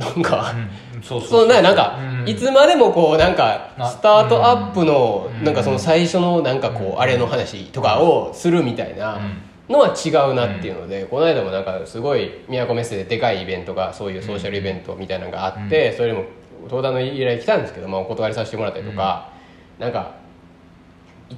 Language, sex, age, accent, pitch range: Japanese, male, 20-39, native, 95-130 Hz